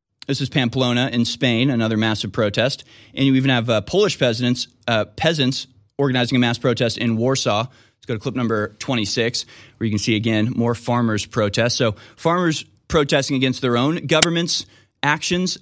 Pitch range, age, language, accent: 115-150 Hz, 30-49, English, American